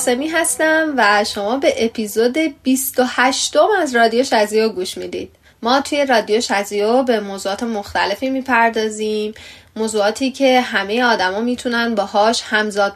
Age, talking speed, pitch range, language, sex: 10-29, 135 wpm, 205-270 Hz, Persian, female